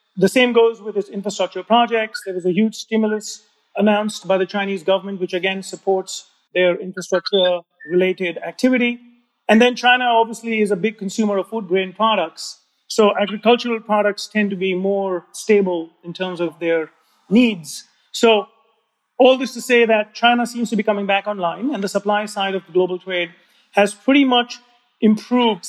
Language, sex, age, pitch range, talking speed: English, male, 40-59, 195-230 Hz, 170 wpm